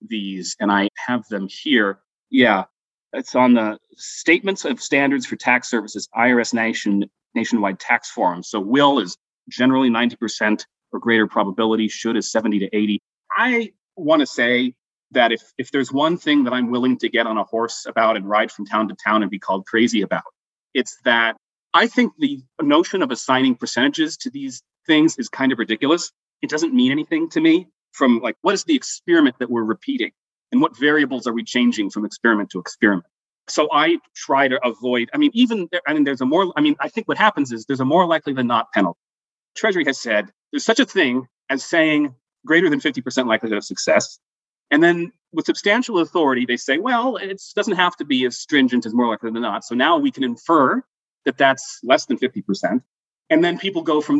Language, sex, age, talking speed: English, male, 30-49, 200 wpm